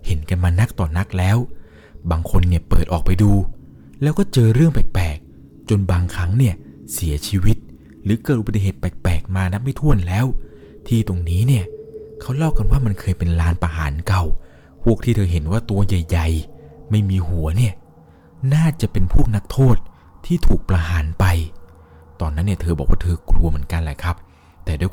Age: 20-39